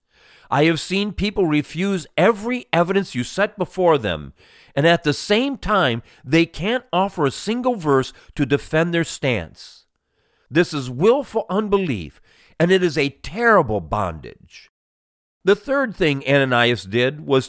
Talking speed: 145 wpm